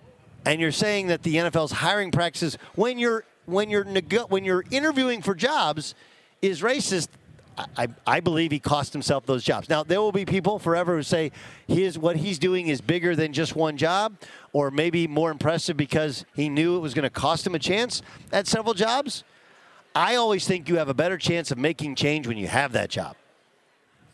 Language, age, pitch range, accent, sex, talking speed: English, 40-59, 145-200 Hz, American, male, 200 wpm